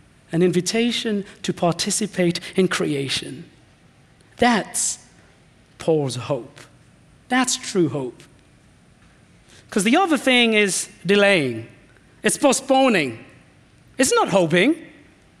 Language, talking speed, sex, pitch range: English, 90 wpm, male, 150-200 Hz